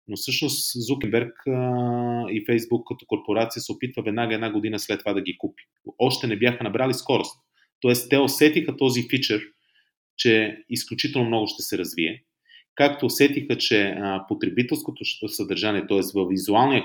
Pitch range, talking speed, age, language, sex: 105-135 Hz, 145 wpm, 30-49, Bulgarian, male